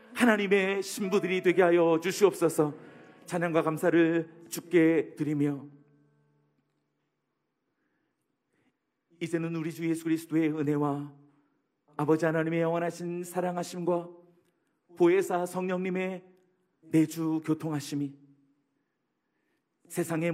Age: 40-59